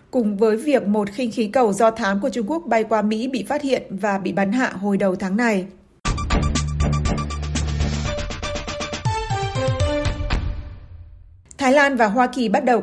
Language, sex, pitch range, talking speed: Vietnamese, female, 200-240 Hz, 155 wpm